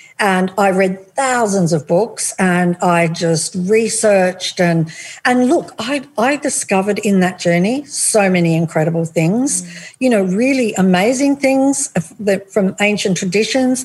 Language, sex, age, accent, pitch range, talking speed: English, female, 60-79, Australian, 180-240 Hz, 140 wpm